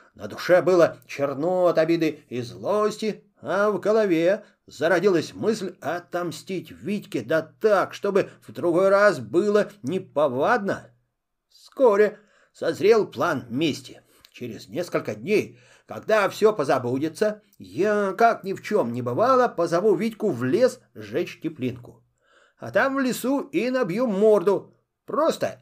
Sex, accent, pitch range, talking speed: male, native, 175-235 Hz, 125 wpm